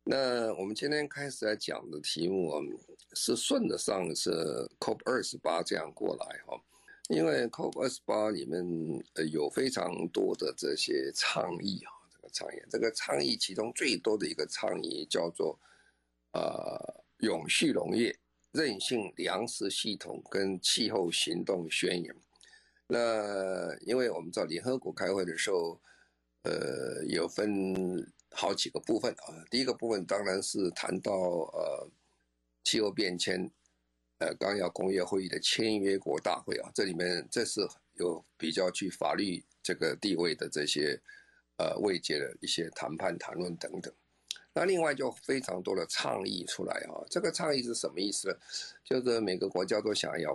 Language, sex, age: Chinese, male, 50-69